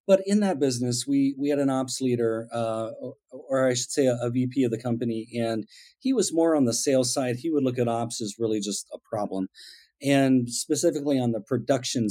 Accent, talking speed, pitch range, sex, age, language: American, 220 wpm, 115-140 Hz, male, 40-59, English